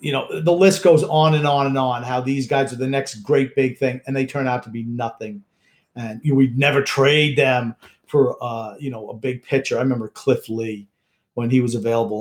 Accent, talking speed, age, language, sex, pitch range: American, 235 wpm, 50-69, English, male, 130-155 Hz